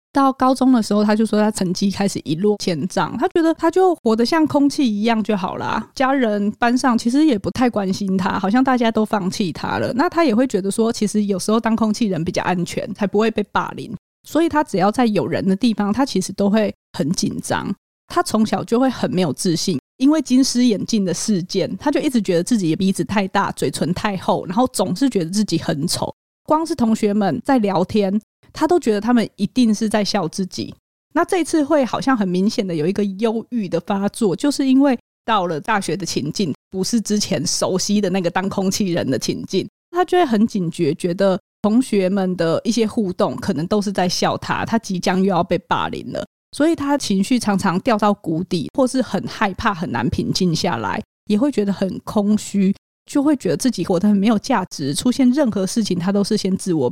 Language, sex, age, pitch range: Chinese, female, 20-39, 190-250 Hz